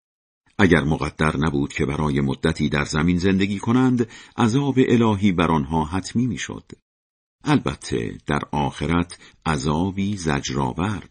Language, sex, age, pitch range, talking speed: Persian, male, 50-69, 75-105 Hz, 115 wpm